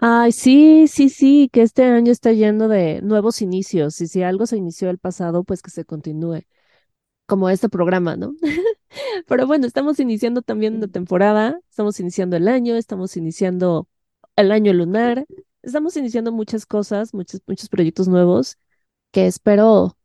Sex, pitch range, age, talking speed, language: female, 180-230 Hz, 20-39, 160 wpm, Spanish